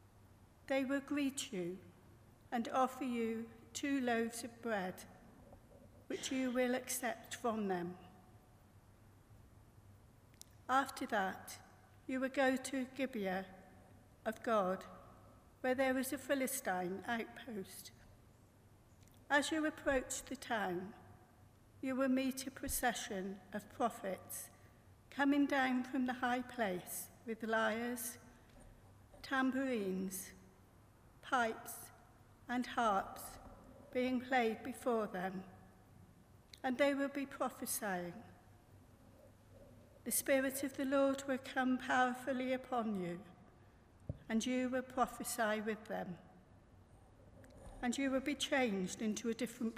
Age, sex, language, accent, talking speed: 60-79, female, English, British, 105 wpm